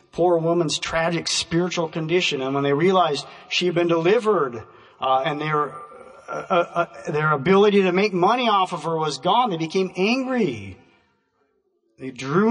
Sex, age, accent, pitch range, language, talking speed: male, 40-59, American, 165-210 Hz, English, 150 wpm